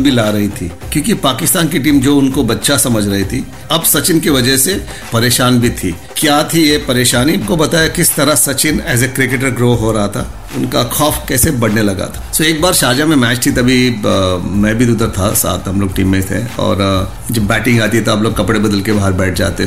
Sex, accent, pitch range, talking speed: male, native, 100-125 Hz, 105 wpm